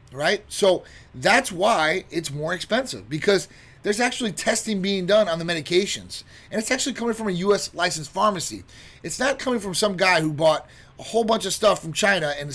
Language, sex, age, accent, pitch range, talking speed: English, male, 30-49, American, 160-215 Hz, 195 wpm